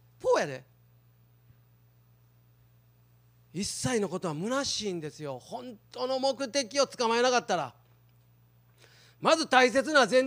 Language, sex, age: Japanese, male, 40-59